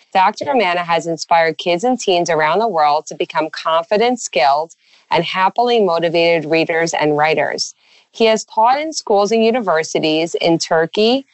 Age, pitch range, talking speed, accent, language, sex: 30-49, 170-225 Hz, 155 wpm, American, English, female